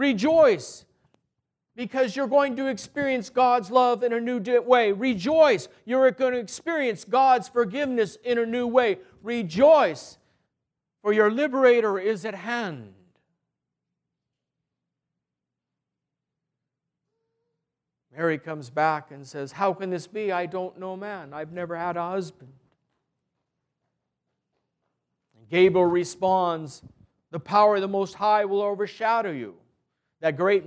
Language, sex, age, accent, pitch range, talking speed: English, male, 50-69, American, 180-245 Hz, 120 wpm